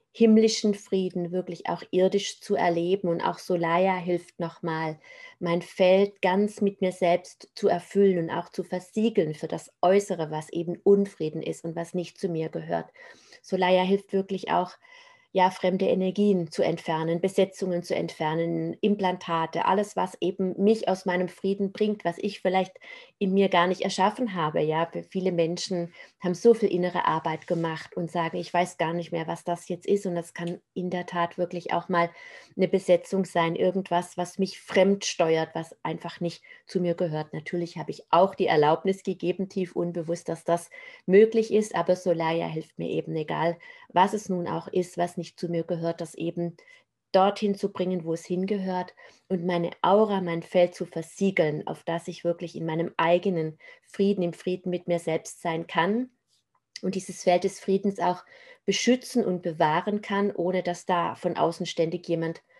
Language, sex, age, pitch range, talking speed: German, female, 30-49, 170-195 Hz, 180 wpm